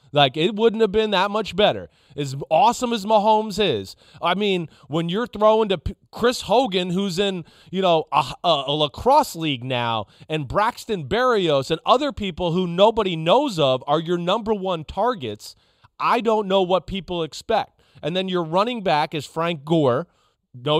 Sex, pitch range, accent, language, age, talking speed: male, 150-195 Hz, American, English, 30-49, 175 wpm